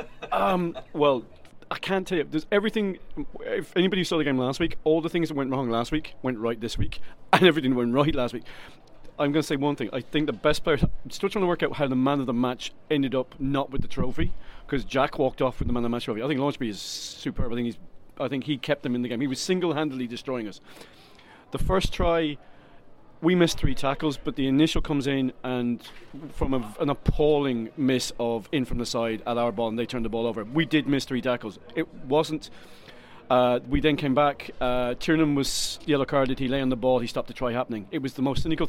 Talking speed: 245 wpm